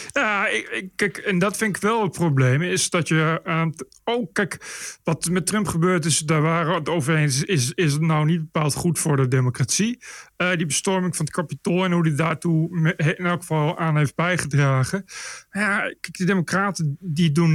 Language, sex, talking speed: Dutch, male, 210 wpm